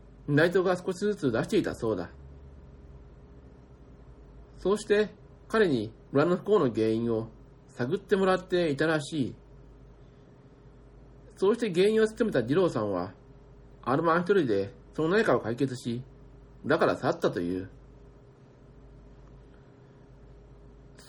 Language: Japanese